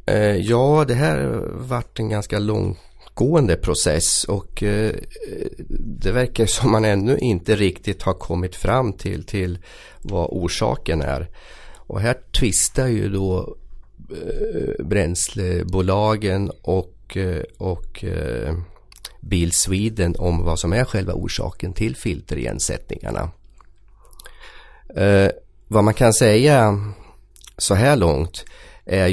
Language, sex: Swedish, male